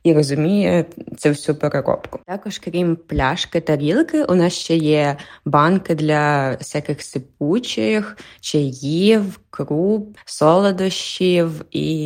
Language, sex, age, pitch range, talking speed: Ukrainian, female, 20-39, 145-170 Hz, 110 wpm